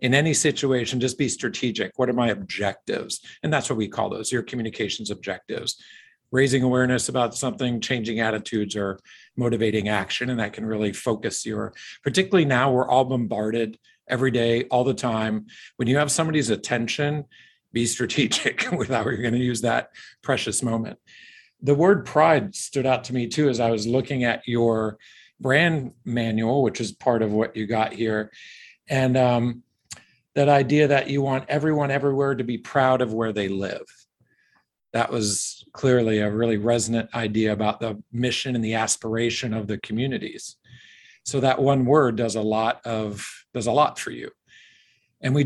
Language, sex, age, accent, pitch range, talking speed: English, male, 50-69, American, 110-135 Hz, 170 wpm